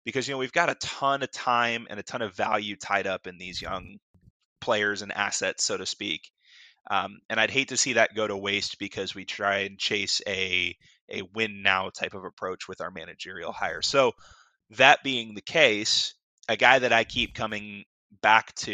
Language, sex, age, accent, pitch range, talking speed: English, male, 20-39, American, 105-125 Hz, 205 wpm